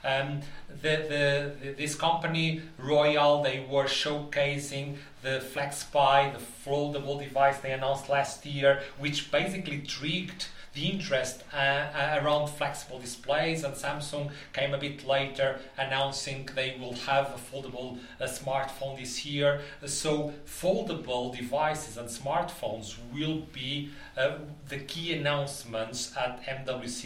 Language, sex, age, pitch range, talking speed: English, male, 40-59, 125-150 Hz, 125 wpm